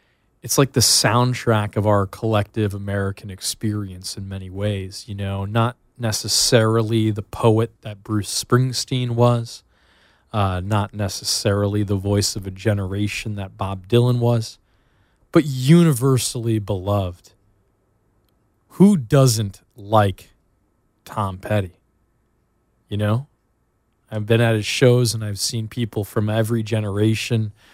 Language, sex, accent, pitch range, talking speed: English, male, American, 100-115 Hz, 120 wpm